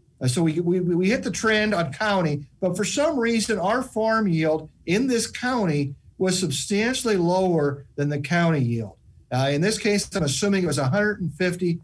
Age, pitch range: 50-69, 155-205 Hz